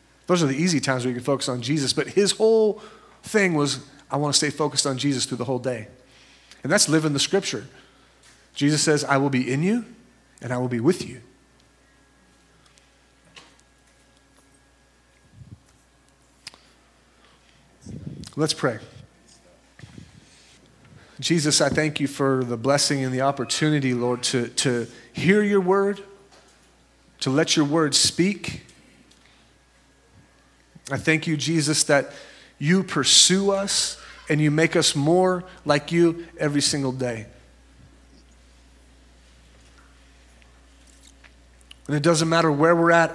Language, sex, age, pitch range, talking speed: English, male, 40-59, 120-160 Hz, 130 wpm